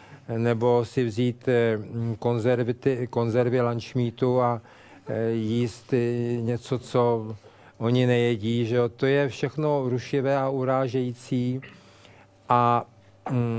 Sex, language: male, Czech